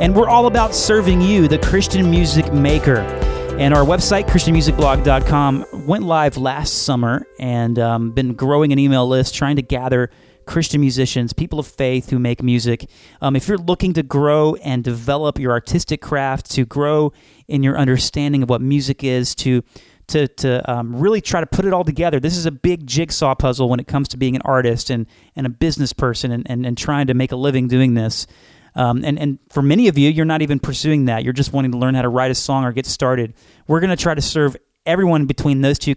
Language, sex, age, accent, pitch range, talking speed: English, male, 30-49, American, 125-155 Hz, 215 wpm